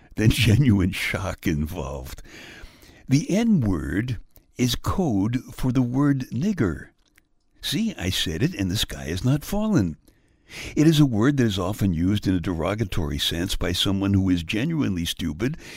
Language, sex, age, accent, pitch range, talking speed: English, male, 60-79, American, 90-135 Hz, 155 wpm